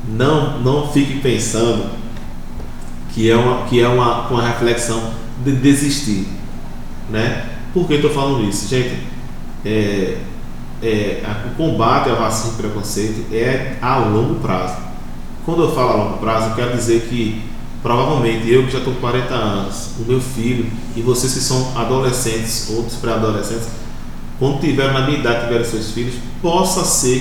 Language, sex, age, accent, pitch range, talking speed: Portuguese, male, 20-39, Brazilian, 110-130 Hz, 155 wpm